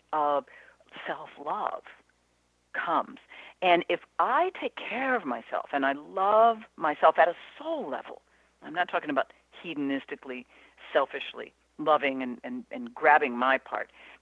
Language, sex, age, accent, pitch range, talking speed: English, female, 50-69, American, 135-200 Hz, 140 wpm